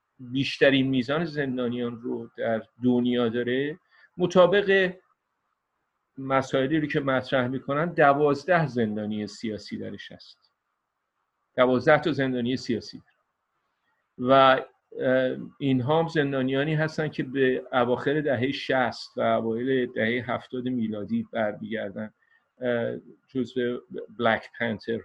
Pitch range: 120-140 Hz